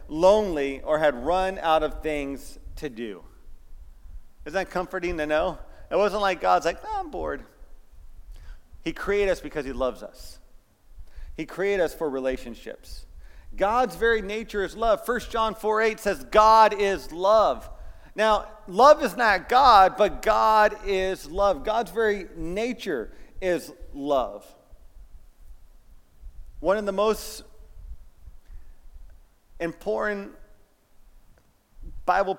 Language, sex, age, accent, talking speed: English, male, 40-59, American, 120 wpm